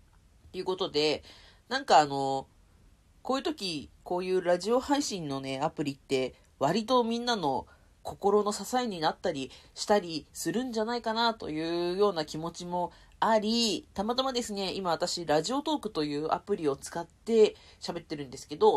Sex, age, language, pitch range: female, 40-59, Japanese, 150-220 Hz